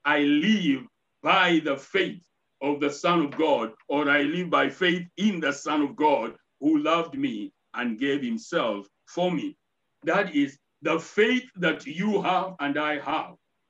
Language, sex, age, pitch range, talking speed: English, male, 60-79, 160-215 Hz, 165 wpm